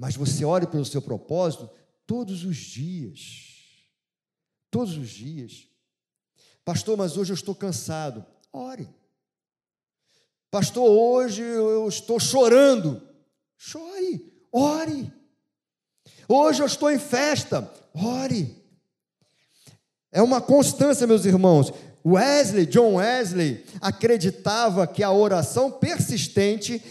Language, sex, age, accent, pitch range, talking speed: Portuguese, male, 50-69, Brazilian, 160-230 Hz, 100 wpm